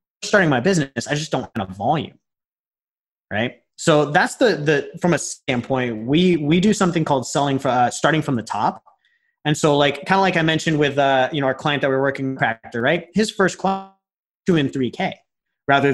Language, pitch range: English, 130-185 Hz